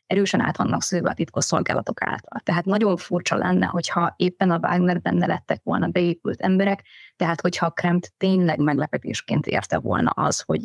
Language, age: Hungarian, 20-39